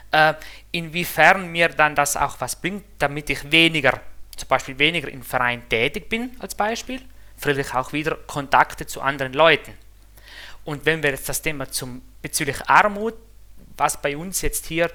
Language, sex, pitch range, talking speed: German, male, 135-160 Hz, 155 wpm